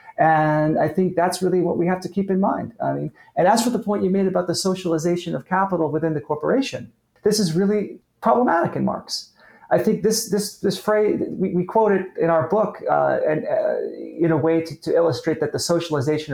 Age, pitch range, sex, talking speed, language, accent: 30-49, 135-180 Hz, male, 220 wpm, English, American